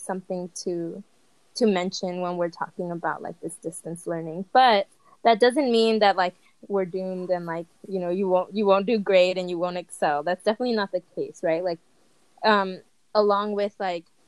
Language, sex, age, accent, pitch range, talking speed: English, female, 20-39, American, 180-220 Hz, 190 wpm